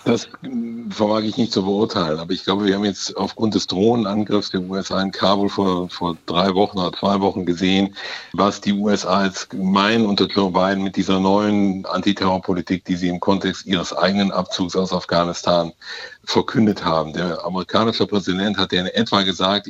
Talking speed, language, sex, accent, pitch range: 180 wpm, German, male, German, 90-105 Hz